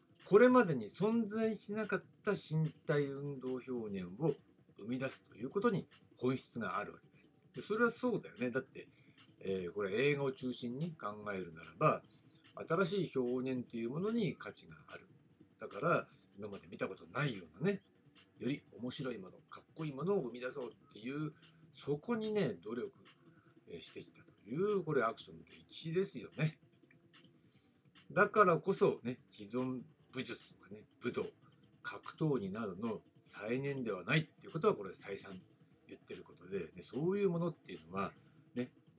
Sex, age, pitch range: male, 50-69, 130-190 Hz